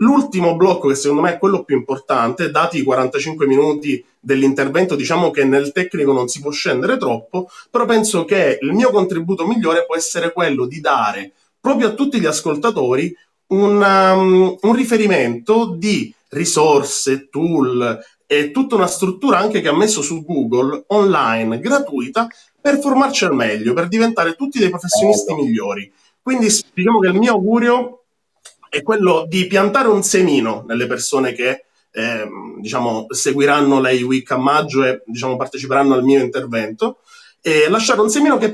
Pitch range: 140-215 Hz